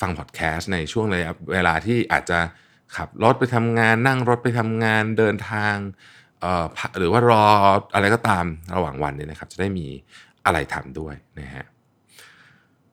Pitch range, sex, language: 80-115 Hz, male, Thai